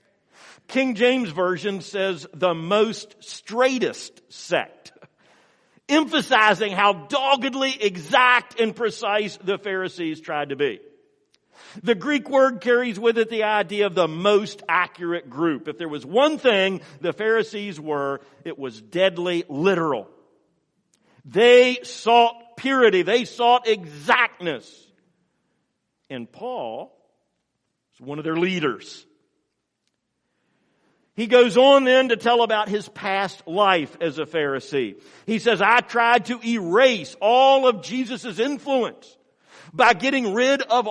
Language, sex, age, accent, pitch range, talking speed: English, male, 50-69, American, 180-255 Hz, 125 wpm